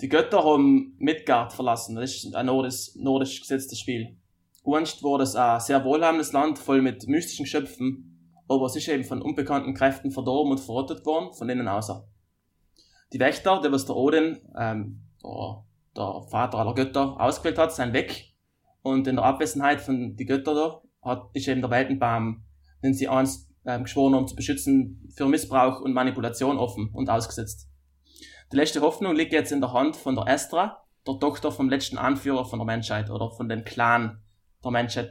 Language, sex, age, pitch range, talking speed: German, male, 20-39, 115-145 Hz, 180 wpm